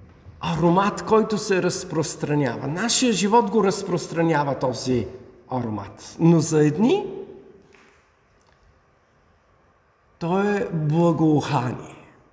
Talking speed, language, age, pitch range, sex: 80 wpm, Bulgarian, 50-69, 135-225 Hz, male